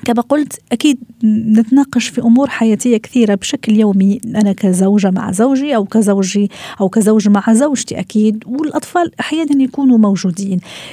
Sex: female